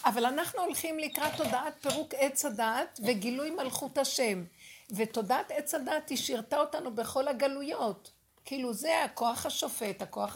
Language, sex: Hebrew, female